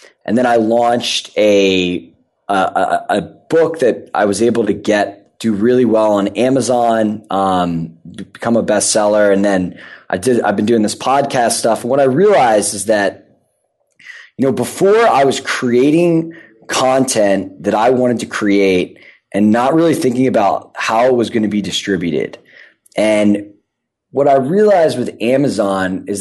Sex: male